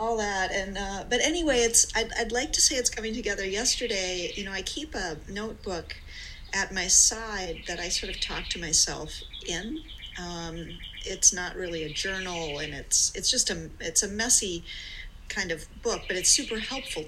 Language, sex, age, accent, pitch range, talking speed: English, female, 40-59, American, 180-245 Hz, 190 wpm